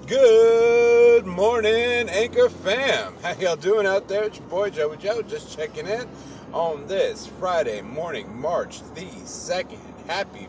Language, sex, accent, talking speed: English, male, American, 145 wpm